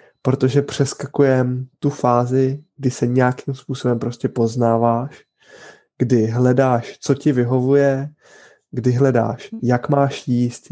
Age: 20-39